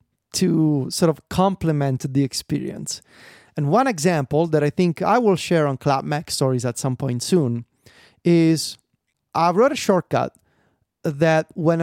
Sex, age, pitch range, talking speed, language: male, 30-49, 140-180 Hz, 150 wpm, English